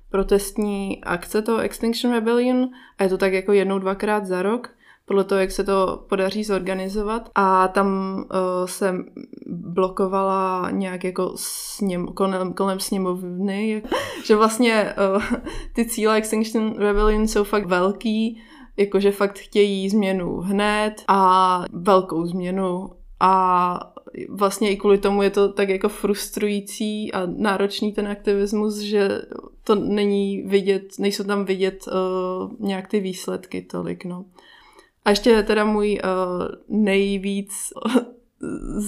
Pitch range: 190-215 Hz